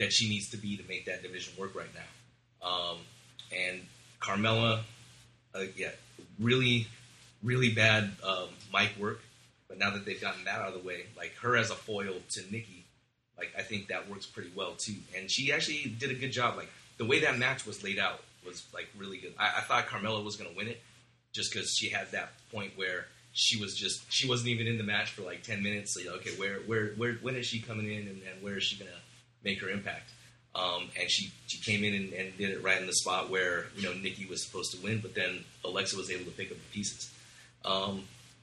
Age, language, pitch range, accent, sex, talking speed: 30-49, English, 100-120 Hz, American, male, 235 wpm